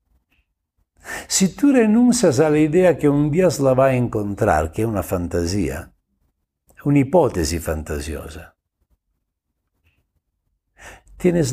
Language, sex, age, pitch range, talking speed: Spanish, male, 60-79, 80-130 Hz, 110 wpm